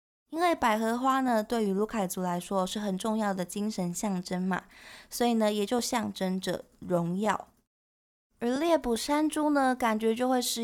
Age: 20-39